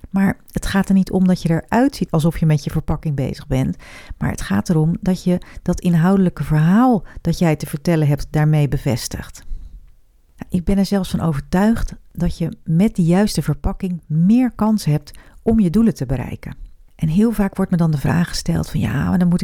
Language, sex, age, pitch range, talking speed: Dutch, female, 40-59, 160-205 Hz, 205 wpm